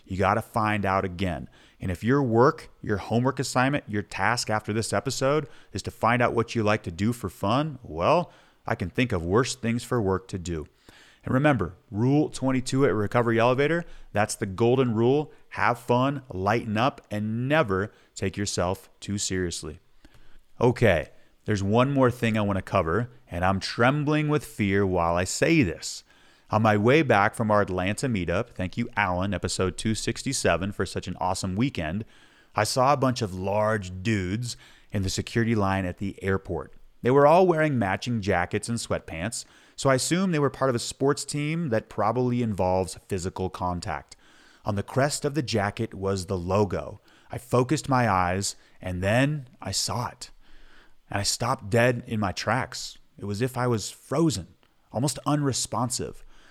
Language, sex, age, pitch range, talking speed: English, male, 30-49, 95-125 Hz, 180 wpm